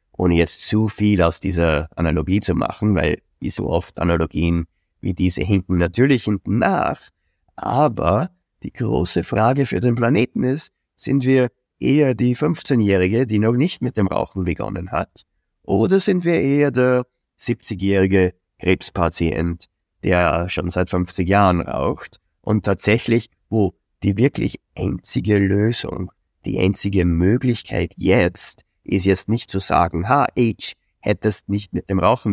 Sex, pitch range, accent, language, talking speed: male, 90-115 Hz, German, German, 145 wpm